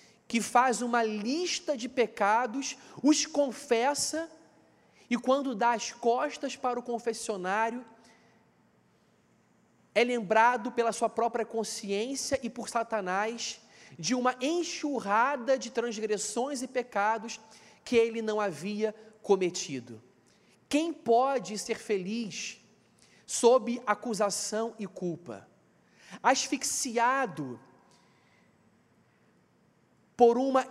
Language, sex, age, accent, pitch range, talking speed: Portuguese, male, 40-59, Brazilian, 220-260 Hz, 95 wpm